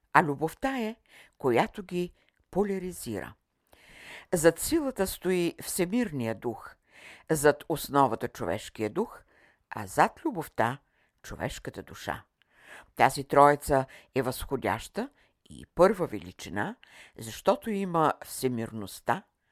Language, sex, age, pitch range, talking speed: Bulgarian, female, 60-79, 120-170 Hz, 90 wpm